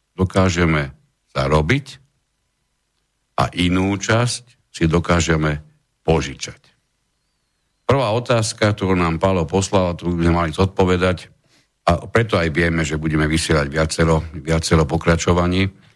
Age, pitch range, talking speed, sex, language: 60-79, 85-105 Hz, 105 wpm, male, Slovak